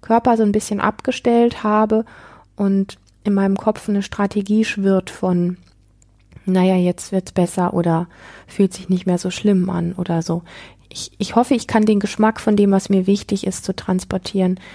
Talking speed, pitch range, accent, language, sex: 175 wpm, 185-215 Hz, German, German, female